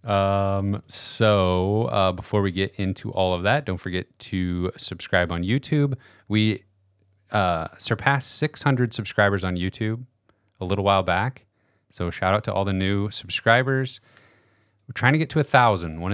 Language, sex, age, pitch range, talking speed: English, male, 30-49, 95-110 Hz, 160 wpm